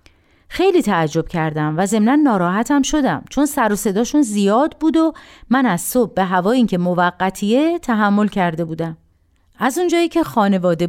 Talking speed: 155 wpm